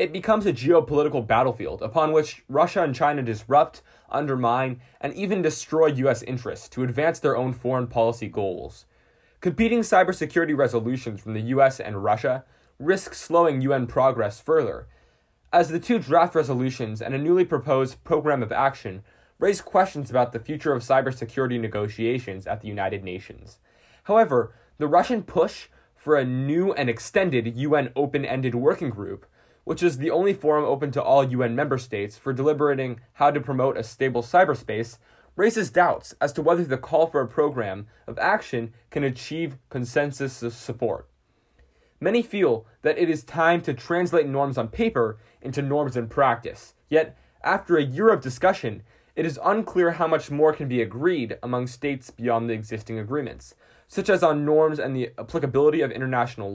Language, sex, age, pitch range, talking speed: English, male, 20-39, 120-160 Hz, 165 wpm